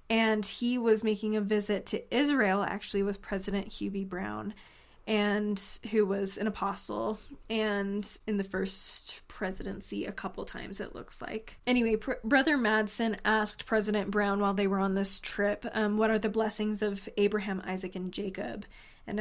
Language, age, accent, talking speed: English, 10-29, American, 160 wpm